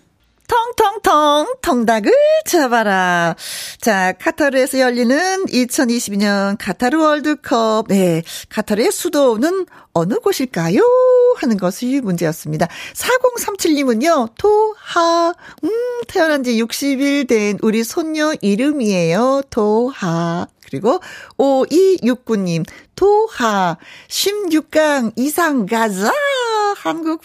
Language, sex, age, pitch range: Korean, female, 40-59, 215-335 Hz